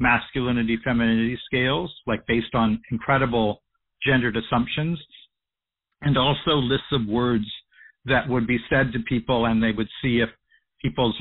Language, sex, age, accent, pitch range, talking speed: English, male, 50-69, American, 115-135 Hz, 140 wpm